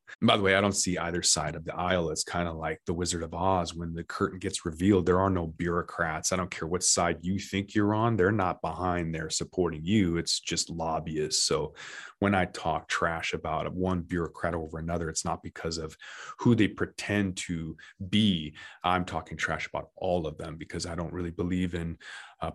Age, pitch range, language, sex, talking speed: 30-49, 85-100 Hz, English, male, 210 wpm